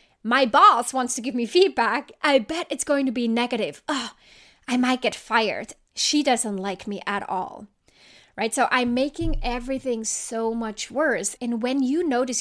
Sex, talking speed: female, 180 wpm